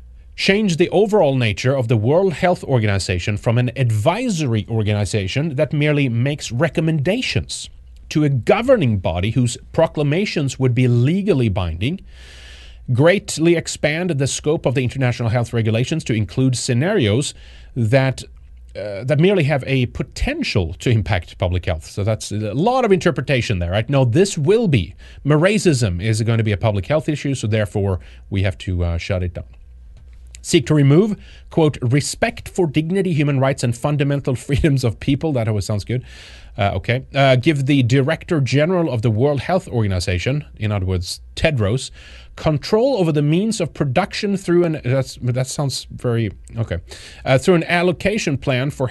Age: 30-49